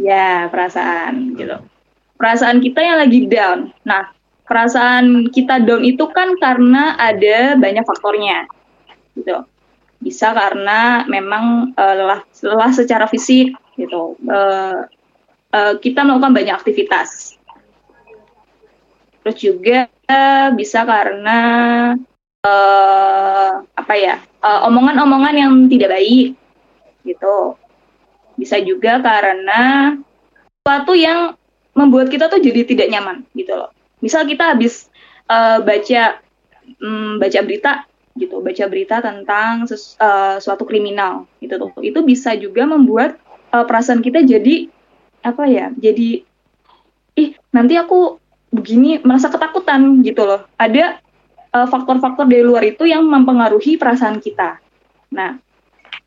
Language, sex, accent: Indonesian, female, native